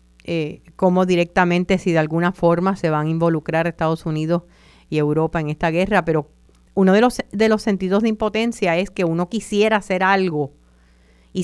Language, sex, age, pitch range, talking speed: Spanish, female, 50-69, 160-195 Hz, 180 wpm